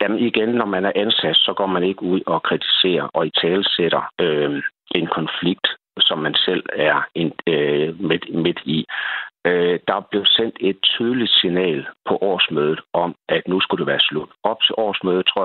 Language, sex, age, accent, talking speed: Danish, male, 60-79, native, 180 wpm